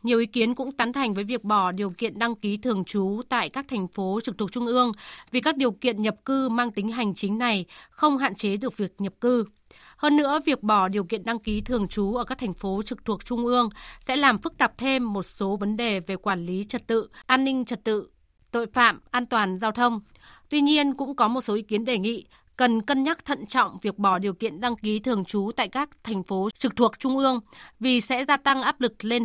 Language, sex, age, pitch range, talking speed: Vietnamese, female, 20-39, 205-250 Hz, 250 wpm